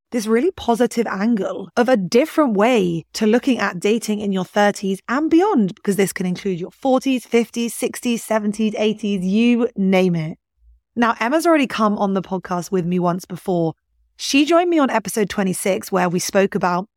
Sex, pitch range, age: female, 180-225 Hz, 20-39